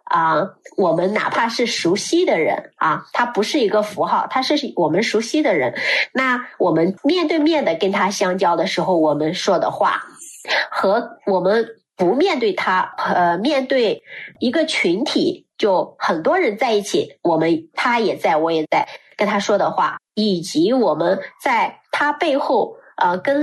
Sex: female